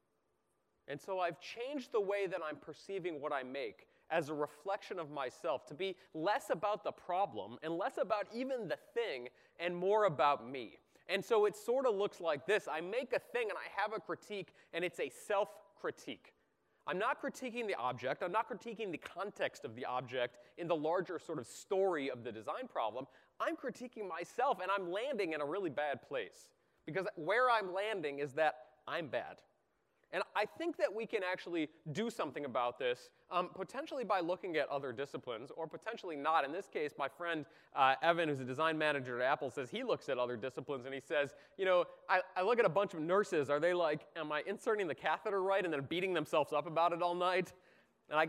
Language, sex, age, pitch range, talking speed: English, male, 30-49, 155-220 Hz, 210 wpm